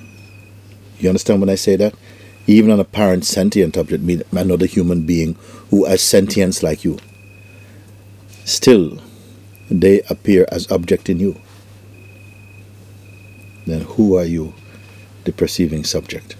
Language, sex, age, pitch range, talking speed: English, male, 50-69, 95-105 Hz, 120 wpm